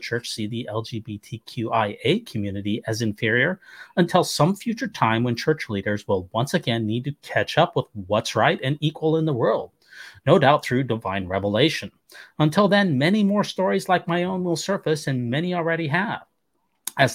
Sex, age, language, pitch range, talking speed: male, 30-49, English, 115-160 Hz, 170 wpm